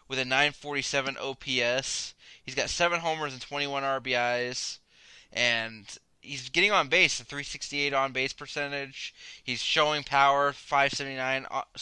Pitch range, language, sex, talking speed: 120-150 Hz, English, male, 125 wpm